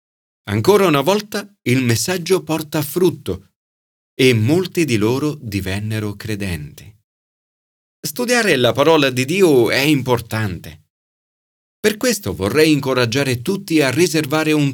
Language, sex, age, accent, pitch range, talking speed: Italian, male, 40-59, native, 100-155 Hz, 115 wpm